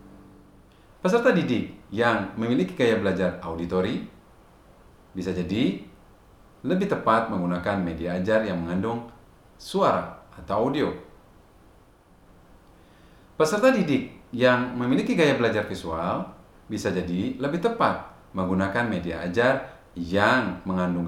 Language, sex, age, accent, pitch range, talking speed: Indonesian, male, 30-49, native, 90-115 Hz, 100 wpm